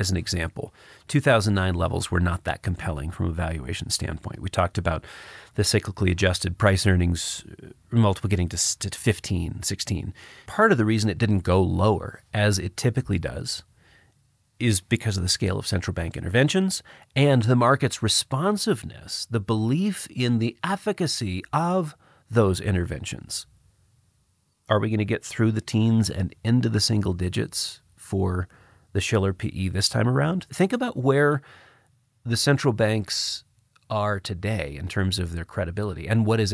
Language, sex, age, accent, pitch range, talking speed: English, male, 40-59, American, 95-115 Hz, 155 wpm